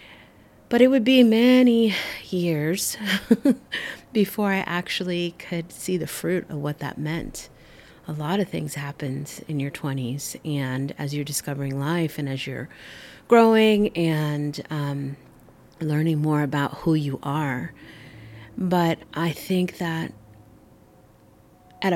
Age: 30-49